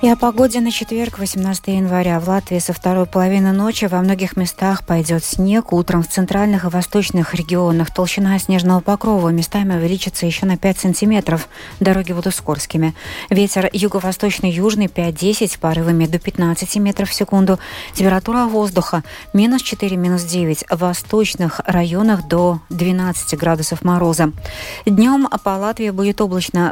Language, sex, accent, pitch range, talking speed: Russian, female, native, 175-205 Hz, 140 wpm